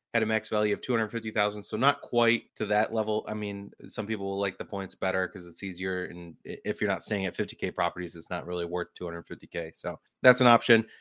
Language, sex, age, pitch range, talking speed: English, male, 30-49, 100-120 Hz, 225 wpm